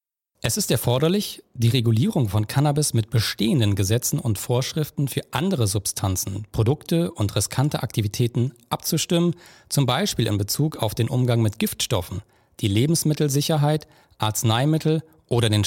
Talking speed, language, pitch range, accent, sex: 130 wpm, German, 110-150 Hz, German, male